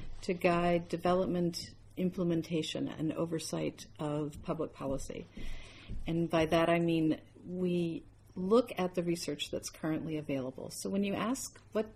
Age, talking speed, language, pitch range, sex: 50-69, 135 wpm, English, 165-195 Hz, female